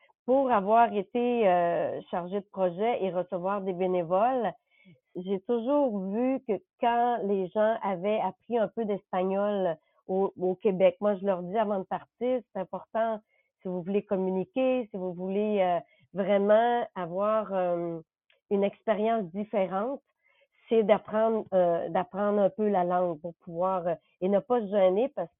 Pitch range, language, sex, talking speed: 185-220 Hz, French, female, 150 wpm